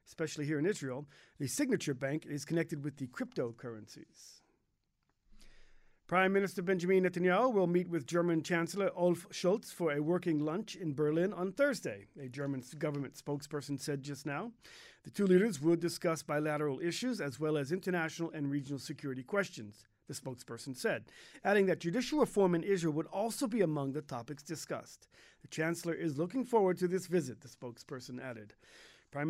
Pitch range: 150-195 Hz